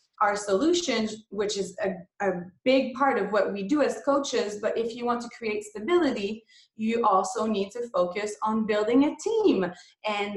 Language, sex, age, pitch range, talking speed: English, female, 20-39, 205-255 Hz, 180 wpm